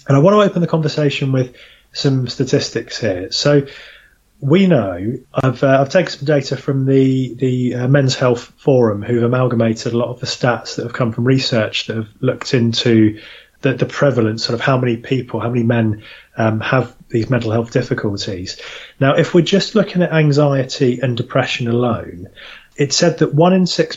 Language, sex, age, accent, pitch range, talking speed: English, male, 30-49, British, 115-140 Hz, 190 wpm